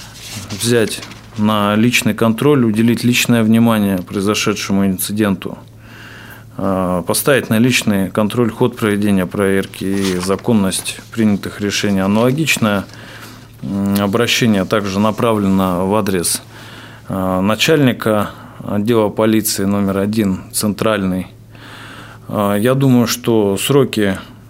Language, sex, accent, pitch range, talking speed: Russian, male, native, 100-120 Hz, 90 wpm